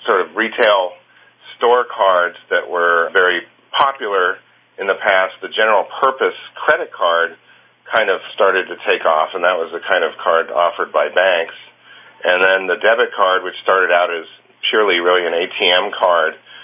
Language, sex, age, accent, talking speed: English, male, 50-69, American, 170 wpm